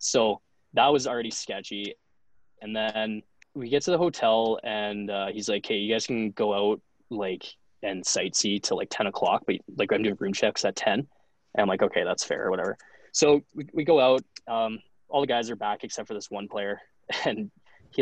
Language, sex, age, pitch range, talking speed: English, male, 20-39, 110-130 Hz, 205 wpm